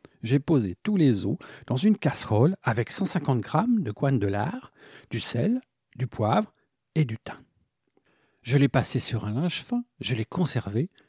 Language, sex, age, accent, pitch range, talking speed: French, male, 50-69, French, 115-155 Hz, 175 wpm